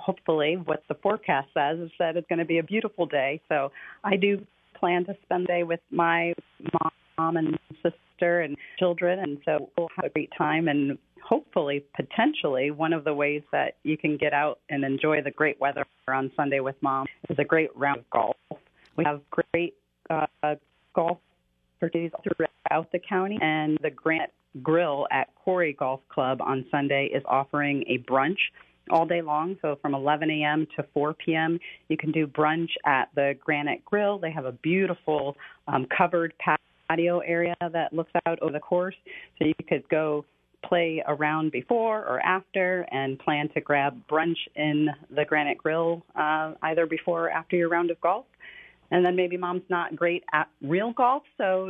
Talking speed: 180 wpm